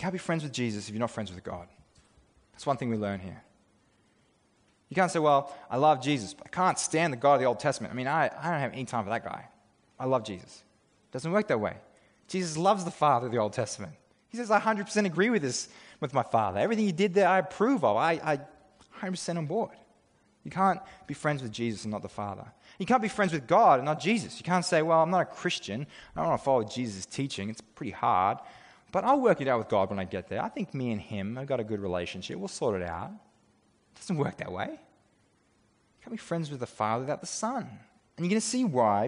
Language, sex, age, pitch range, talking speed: English, male, 20-39, 110-165 Hz, 255 wpm